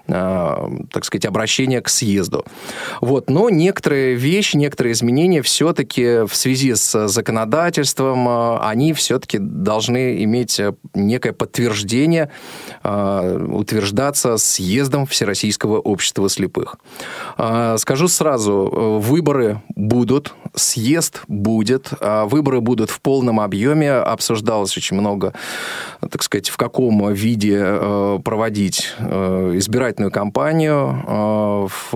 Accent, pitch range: native, 105-140 Hz